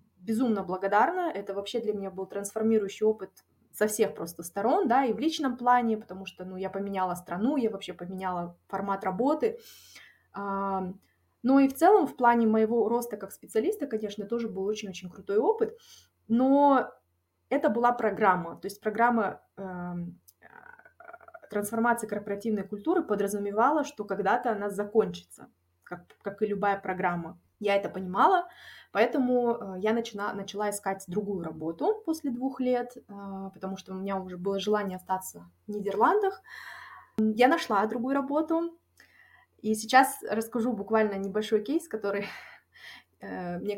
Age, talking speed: 20-39, 140 wpm